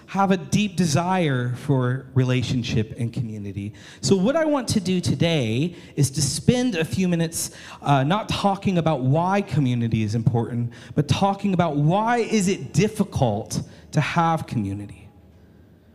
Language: English